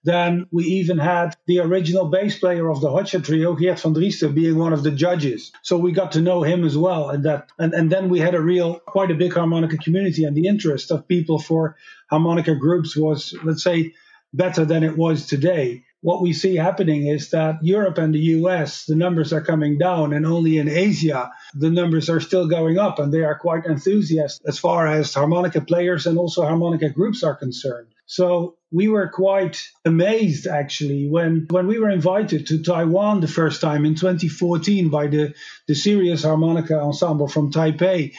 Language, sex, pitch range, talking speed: English, male, 155-180 Hz, 195 wpm